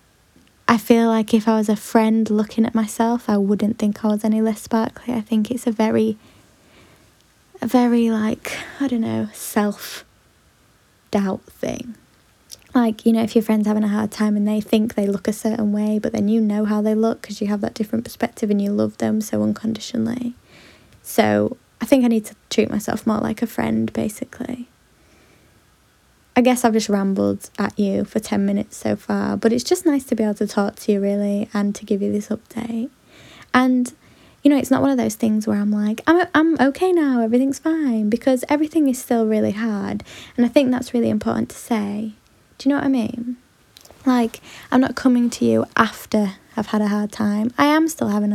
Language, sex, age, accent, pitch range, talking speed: English, female, 10-29, British, 210-240 Hz, 205 wpm